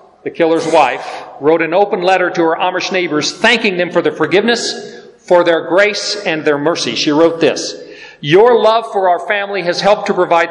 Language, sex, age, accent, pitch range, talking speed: English, male, 40-59, American, 165-210 Hz, 195 wpm